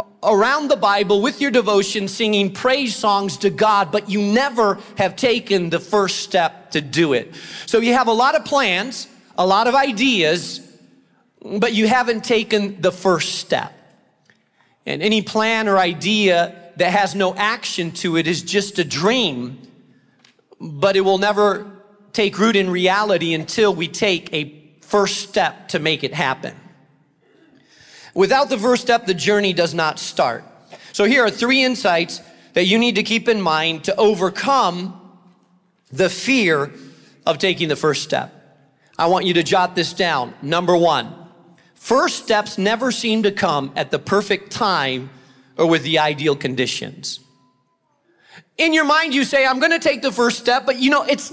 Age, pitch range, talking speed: 40-59, 175-230 Hz, 165 wpm